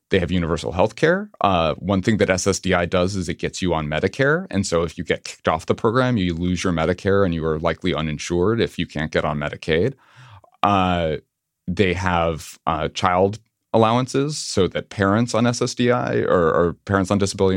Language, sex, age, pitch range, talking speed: English, male, 30-49, 85-105 Hz, 190 wpm